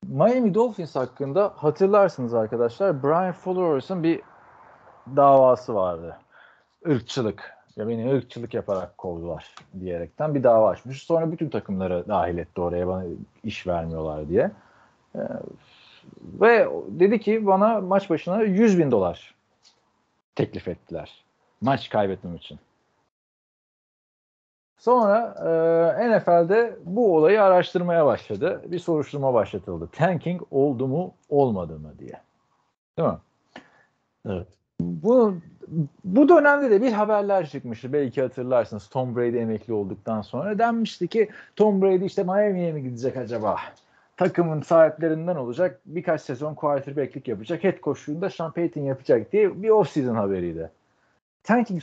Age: 40-59